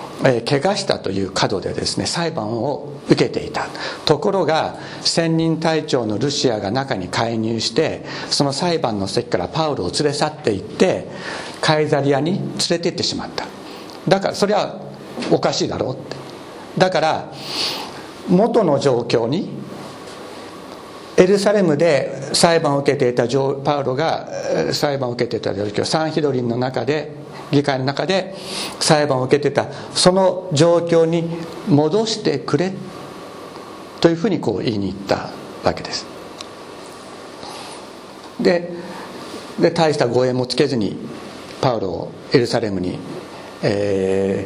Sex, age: male, 60-79